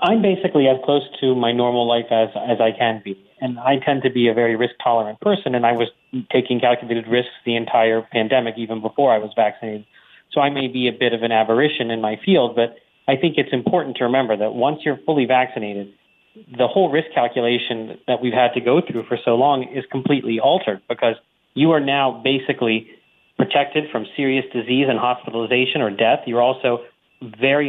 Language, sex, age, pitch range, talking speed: English, male, 30-49, 120-150 Hz, 200 wpm